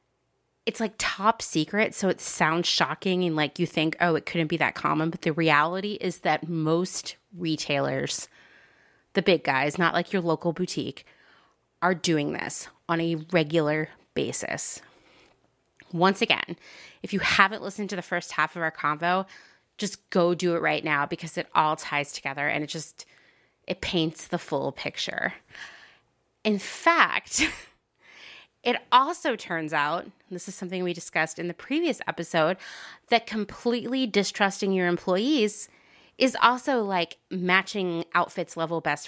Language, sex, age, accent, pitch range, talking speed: English, female, 30-49, American, 160-200 Hz, 150 wpm